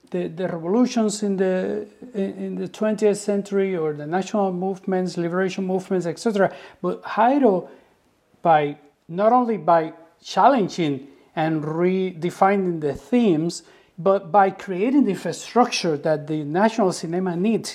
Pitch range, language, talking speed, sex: 165-215 Hz, English, 125 wpm, male